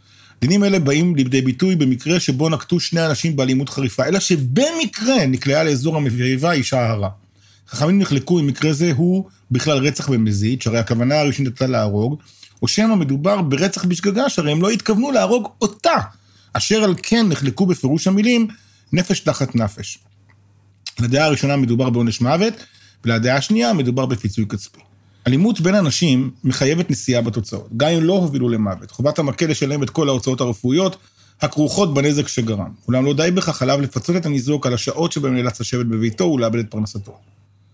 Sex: male